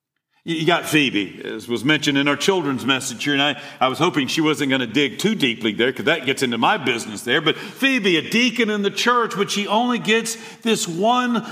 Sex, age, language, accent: male, 50-69, English, American